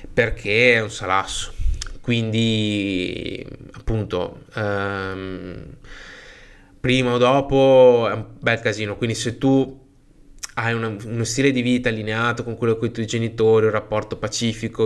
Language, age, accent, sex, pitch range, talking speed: Italian, 20-39, native, male, 100-115 Hz, 135 wpm